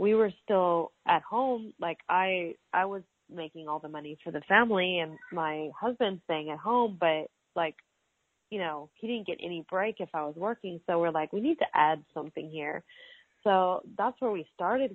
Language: English